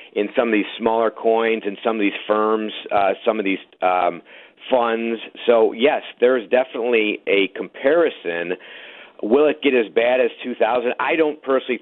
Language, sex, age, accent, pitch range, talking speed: English, male, 50-69, American, 100-150 Hz, 170 wpm